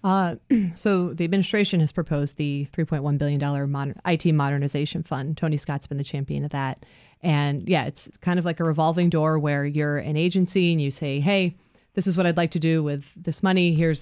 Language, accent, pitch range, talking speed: English, American, 145-175 Hz, 205 wpm